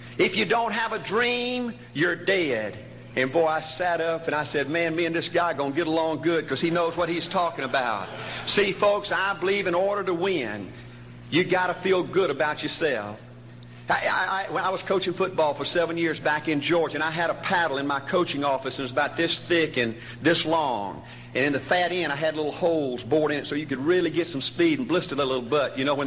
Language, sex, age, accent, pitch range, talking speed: English, male, 50-69, American, 155-200 Hz, 245 wpm